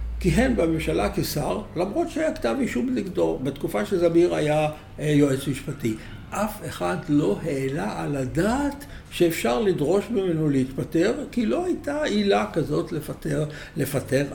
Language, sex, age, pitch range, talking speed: Hebrew, male, 60-79, 125-170 Hz, 125 wpm